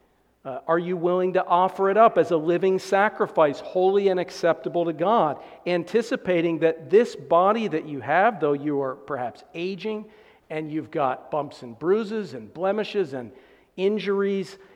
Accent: American